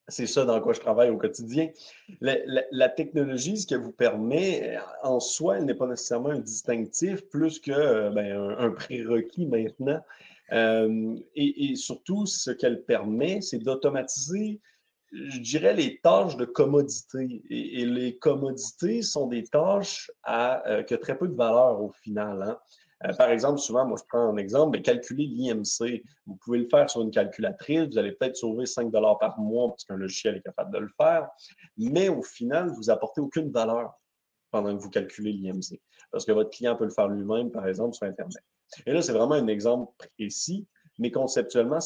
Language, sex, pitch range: French, male, 110-160 Hz